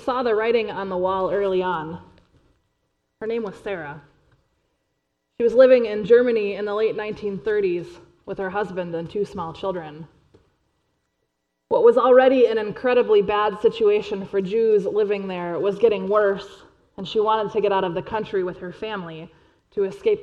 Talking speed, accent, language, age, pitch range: 165 wpm, American, English, 20-39, 180-220 Hz